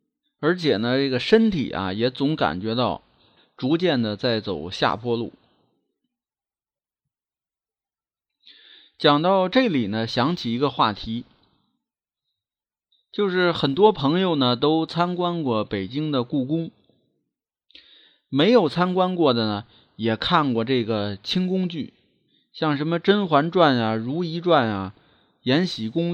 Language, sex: Chinese, male